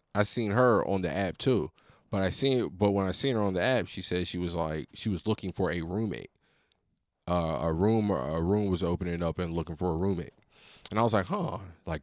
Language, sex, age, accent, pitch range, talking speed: English, male, 20-39, American, 90-120 Hz, 240 wpm